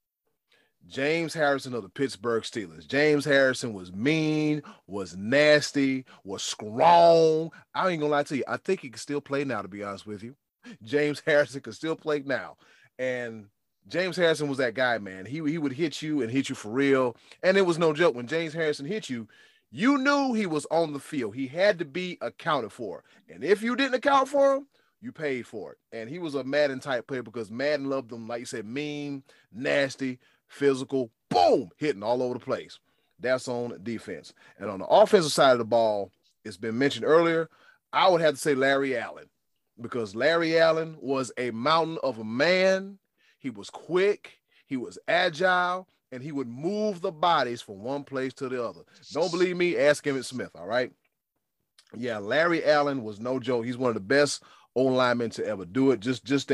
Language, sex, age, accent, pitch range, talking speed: English, male, 30-49, American, 125-165 Hz, 200 wpm